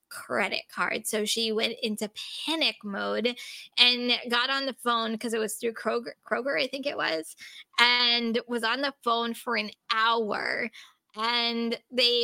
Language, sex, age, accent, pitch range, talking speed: English, female, 20-39, American, 220-260 Hz, 160 wpm